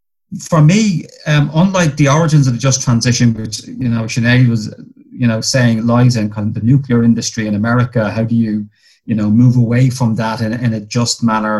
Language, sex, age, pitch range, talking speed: English, male, 30-49, 110-130 Hz, 215 wpm